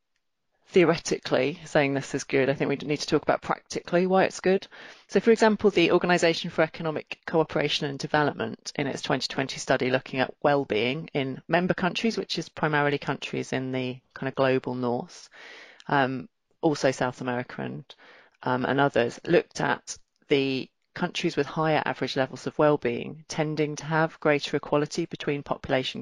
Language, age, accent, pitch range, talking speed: English, 30-49, British, 135-160 Hz, 165 wpm